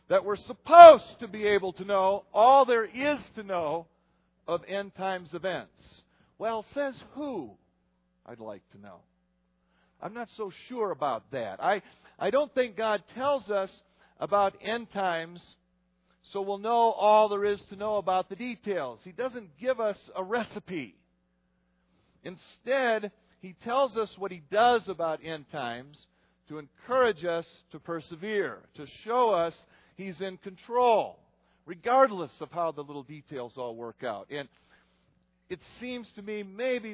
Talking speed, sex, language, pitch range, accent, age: 150 wpm, male, English, 155-220 Hz, American, 50-69